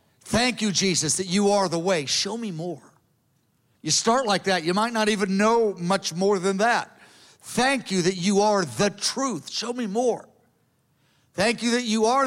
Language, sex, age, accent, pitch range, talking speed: English, male, 50-69, American, 165-220 Hz, 190 wpm